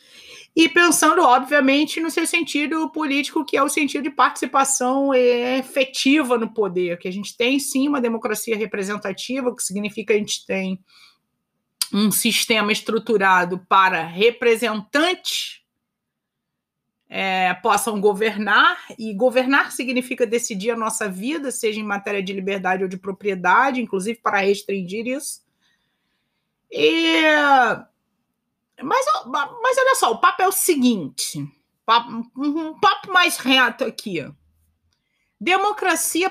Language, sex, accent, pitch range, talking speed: Portuguese, female, Brazilian, 210-315 Hz, 120 wpm